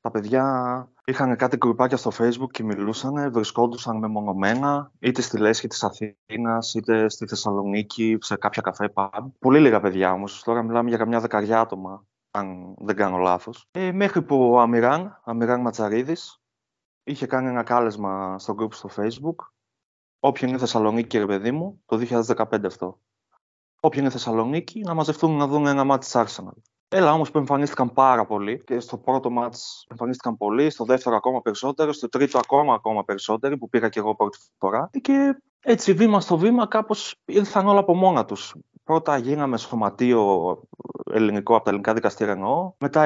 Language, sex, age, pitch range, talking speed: Greek, male, 20-39, 110-140 Hz, 165 wpm